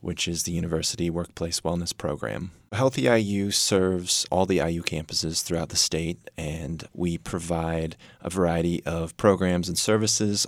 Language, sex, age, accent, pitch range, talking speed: English, male, 30-49, American, 85-100 Hz, 150 wpm